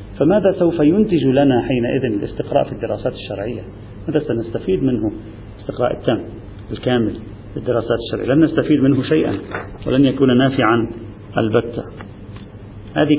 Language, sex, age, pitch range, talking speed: Arabic, male, 40-59, 110-145 Hz, 120 wpm